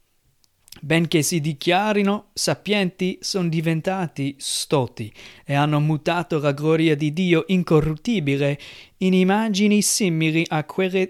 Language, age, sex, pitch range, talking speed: Italian, 30-49, male, 150-190 Hz, 110 wpm